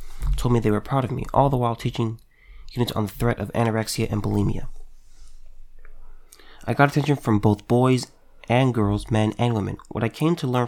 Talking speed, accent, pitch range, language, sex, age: 195 wpm, American, 105-130 Hz, English, male, 30-49